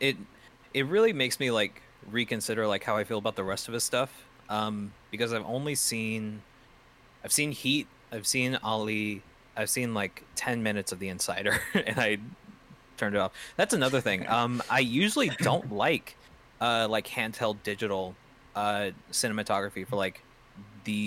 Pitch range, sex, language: 105-130 Hz, male, English